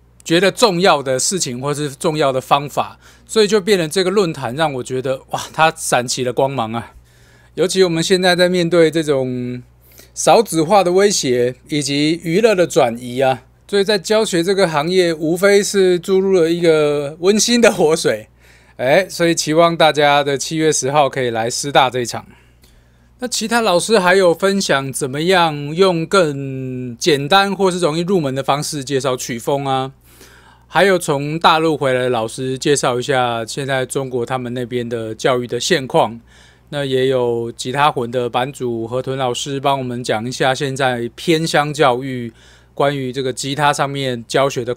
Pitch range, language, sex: 125-170 Hz, Chinese, male